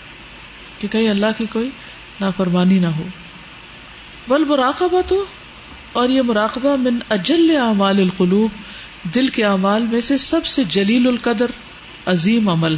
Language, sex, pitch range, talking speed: Urdu, female, 195-275 Hz, 130 wpm